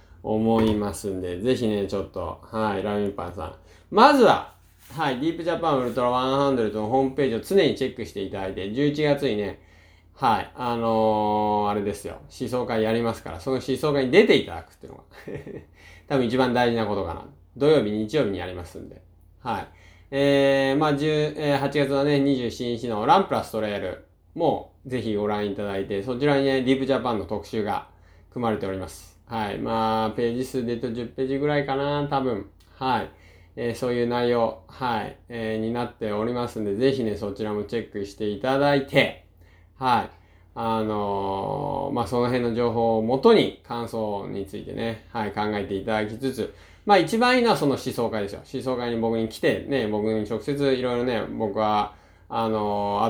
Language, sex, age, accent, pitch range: Japanese, male, 20-39, native, 100-130 Hz